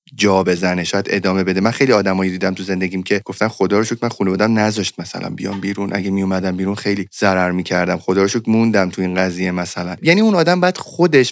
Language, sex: Persian, male